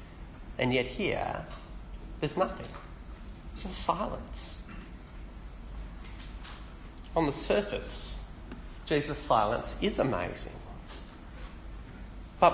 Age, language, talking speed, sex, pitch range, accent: 30-49, English, 70 wpm, male, 85-135 Hz, Australian